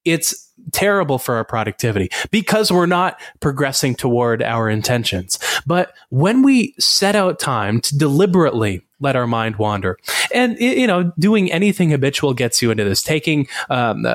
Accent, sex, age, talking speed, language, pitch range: American, male, 20-39, 155 wpm, English, 115-165 Hz